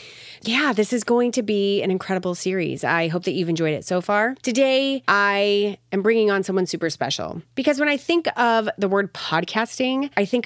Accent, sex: American, female